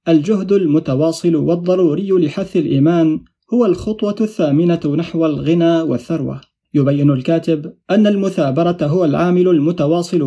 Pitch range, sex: 145-170 Hz, male